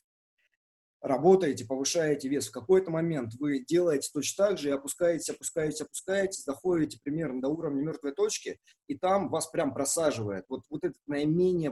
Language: Russian